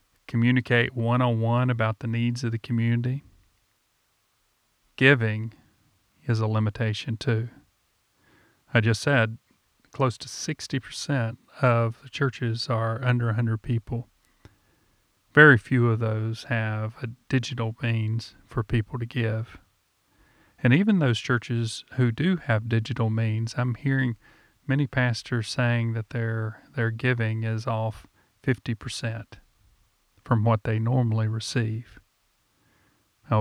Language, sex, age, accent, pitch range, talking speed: English, male, 40-59, American, 110-125 Hz, 115 wpm